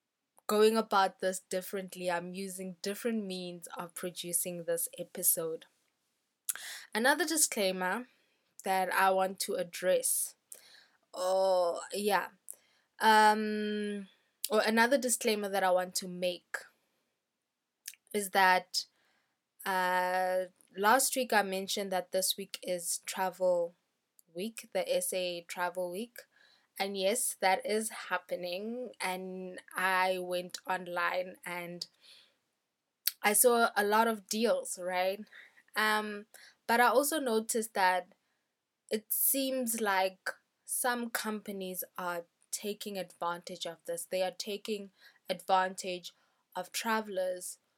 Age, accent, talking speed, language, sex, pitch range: 10-29, South African, 110 wpm, English, female, 185-220 Hz